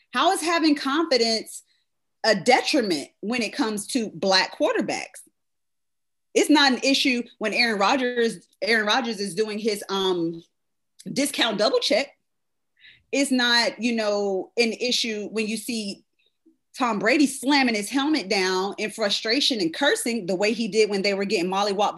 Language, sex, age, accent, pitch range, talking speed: English, female, 30-49, American, 200-270 Hz, 155 wpm